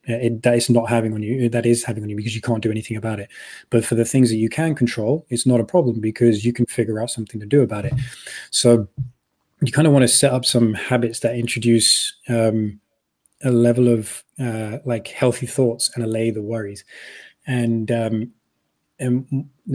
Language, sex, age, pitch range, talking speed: English, male, 20-39, 115-125 Hz, 205 wpm